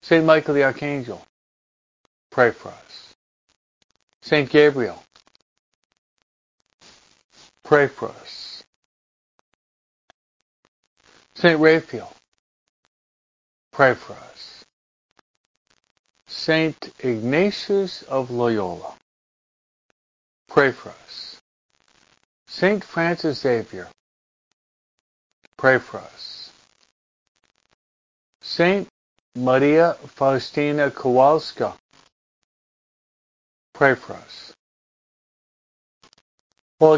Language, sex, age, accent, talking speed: English, male, 50-69, American, 60 wpm